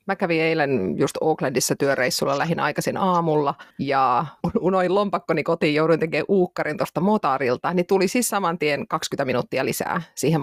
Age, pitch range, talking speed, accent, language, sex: 30-49, 160-195 Hz, 160 wpm, native, Finnish, female